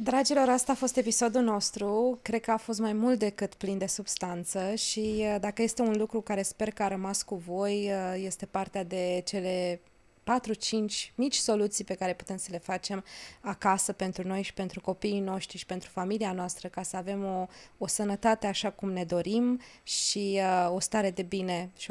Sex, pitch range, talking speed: female, 185-215 Hz, 185 wpm